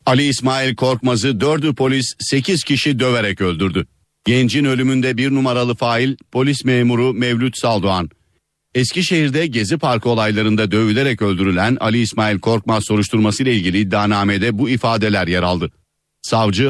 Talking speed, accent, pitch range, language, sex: 125 wpm, native, 110-130 Hz, Turkish, male